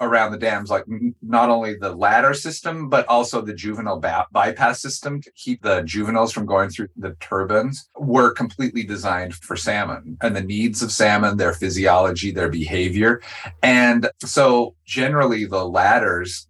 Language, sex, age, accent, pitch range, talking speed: English, male, 30-49, American, 95-120 Hz, 155 wpm